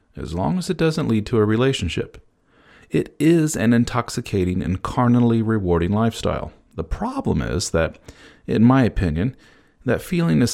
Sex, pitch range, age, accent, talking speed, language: male, 100-145 Hz, 40-59, American, 155 wpm, English